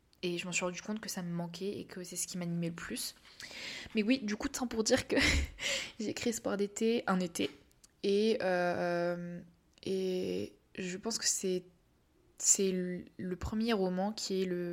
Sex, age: female, 20-39